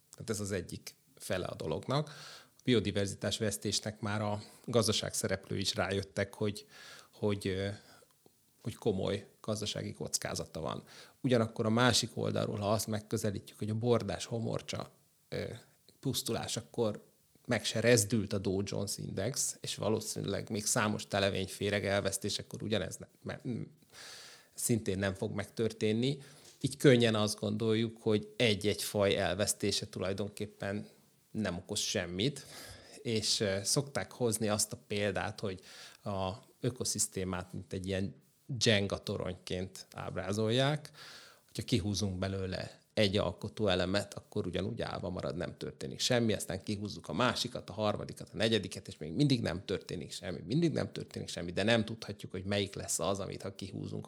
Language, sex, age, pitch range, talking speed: Hungarian, male, 30-49, 100-115 Hz, 140 wpm